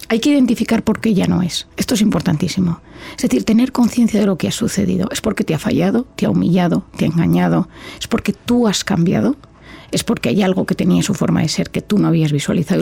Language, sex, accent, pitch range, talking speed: Spanish, female, Spanish, 170-215 Hz, 240 wpm